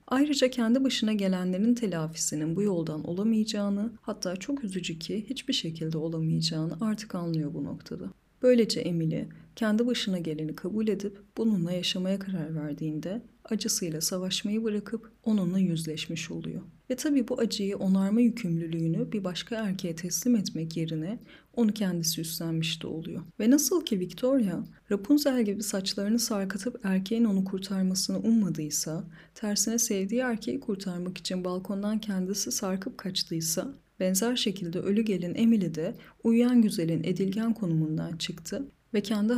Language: Turkish